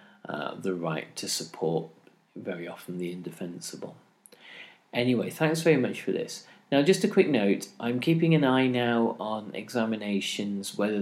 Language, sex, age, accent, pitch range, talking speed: English, male, 40-59, British, 90-120 Hz, 150 wpm